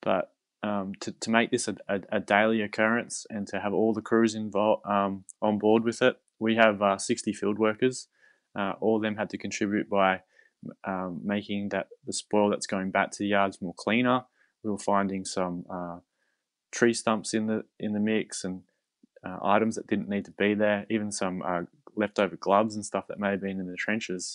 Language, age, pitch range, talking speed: English, 20-39, 95-110 Hz, 210 wpm